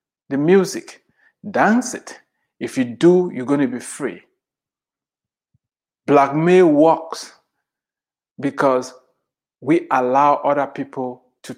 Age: 60-79